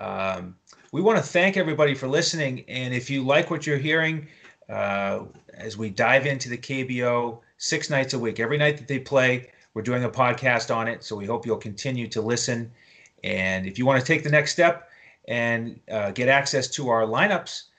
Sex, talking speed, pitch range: male, 200 wpm, 110-130 Hz